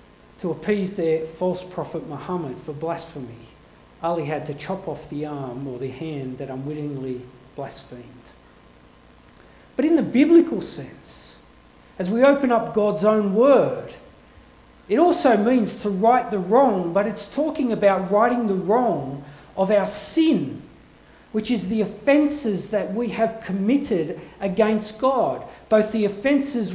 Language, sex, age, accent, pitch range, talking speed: English, male, 40-59, Australian, 165-265 Hz, 140 wpm